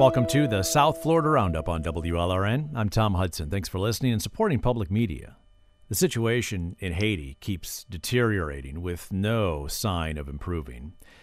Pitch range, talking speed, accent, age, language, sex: 90-115 Hz, 155 wpm, American, 50-69, English, male